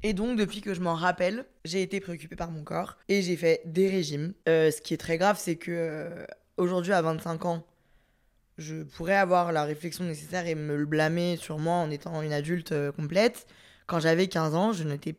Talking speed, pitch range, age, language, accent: 210 wpm, 170-205 Hz, 20-39, French, French